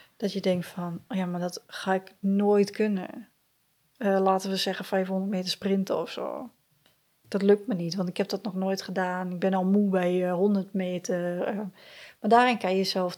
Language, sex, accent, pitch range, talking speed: Dutch, female, Dutch, 200-265 Hz, 200 wpm